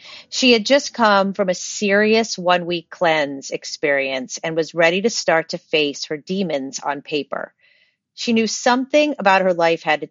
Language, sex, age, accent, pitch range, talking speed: English, female, 40-59, American, 160-215 Hz, 170 wpm